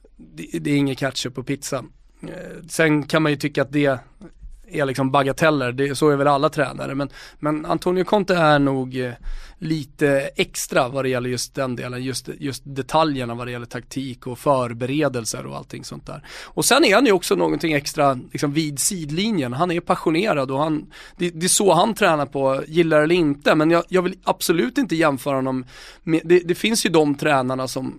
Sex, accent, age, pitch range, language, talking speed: male, native, 30-49, 135-160 Hz, Swedish, 195 wpm